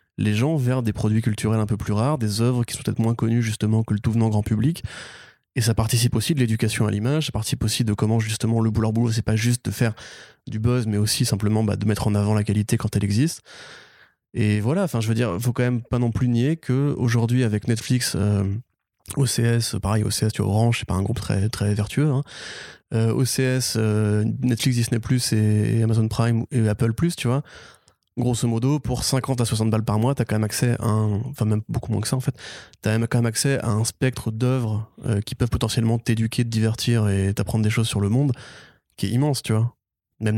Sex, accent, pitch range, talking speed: male, French, 110-125 Hz, 230 wpm